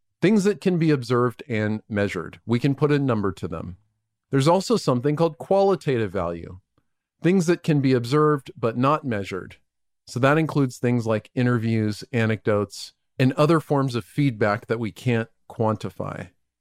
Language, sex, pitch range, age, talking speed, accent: English, male, 105-150 Hz, 40-59, 160 wpm, American